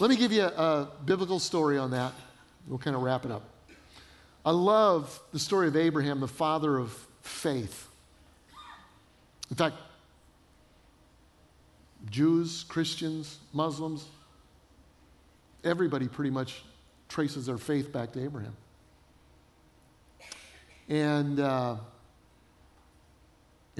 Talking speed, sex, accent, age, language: 105 wpm, male, American, 50-69, English